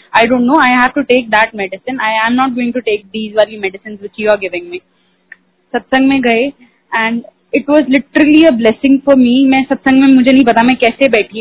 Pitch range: 225-265 Hz